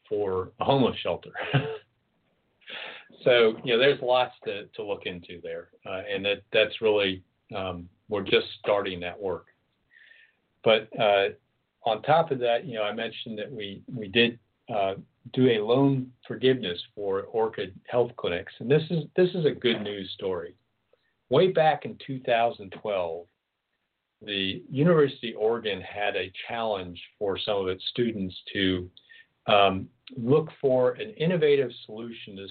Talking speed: 150 wpm